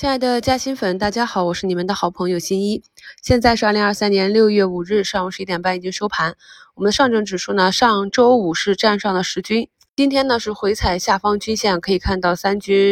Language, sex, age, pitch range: Chinese, female, 20-39, 175-215 Hz